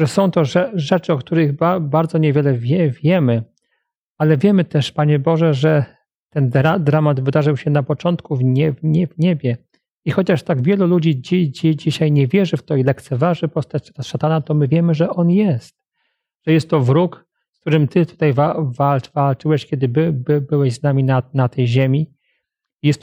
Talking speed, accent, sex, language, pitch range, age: 180 wpm, native, male, Polish, 140-165 Hz, 40-59